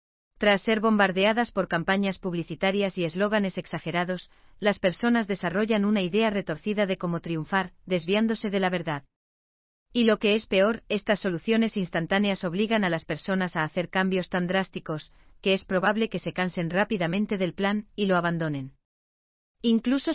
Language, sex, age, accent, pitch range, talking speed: German, female, 40-59, Spanish, 170-205 Hz, 155 wpm